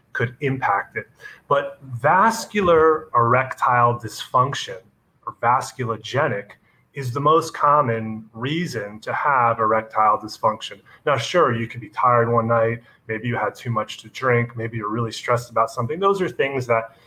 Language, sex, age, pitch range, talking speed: English, male, 30-49, 115-145 Hz, 150 wpm